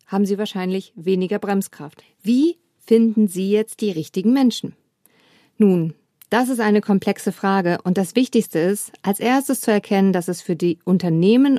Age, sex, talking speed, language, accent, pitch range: 50-69, female, 160 wpm, German, German, 185-235 Hz